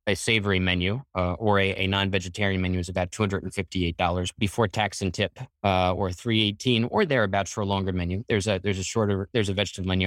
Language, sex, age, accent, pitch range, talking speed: English, male, 20-39, American, 100-120 Hz, 245 wpm